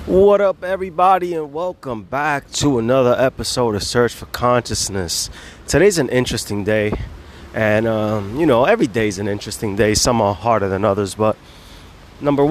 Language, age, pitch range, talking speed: English, 30-49, 100-135 Hz, 165 wpm